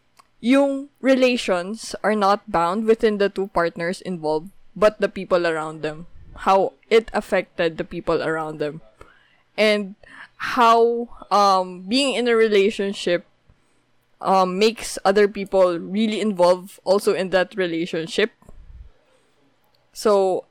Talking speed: 115 wpm